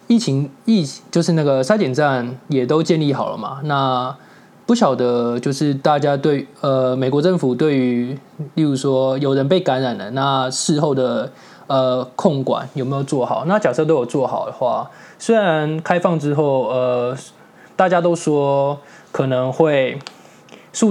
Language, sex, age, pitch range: Chinese, male, 20-39, 130-160 Hz